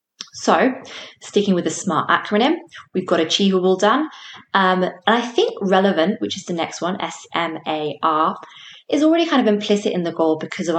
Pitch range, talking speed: 165-205 Hz, 190 wpm